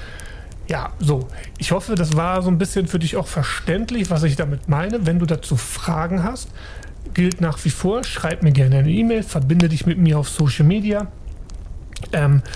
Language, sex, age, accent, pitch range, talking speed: German, male, 30-49, German, 150-180 Hz, 185 wpm